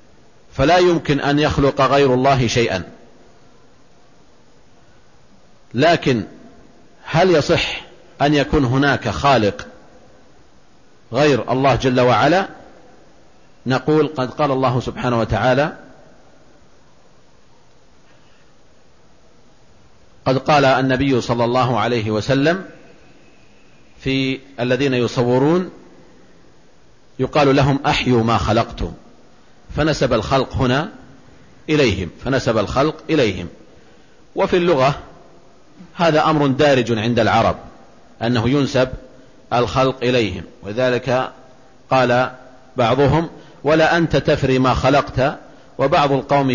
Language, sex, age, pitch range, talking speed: Arabic, male, 50-69, 120-145 Hz, 85 wpm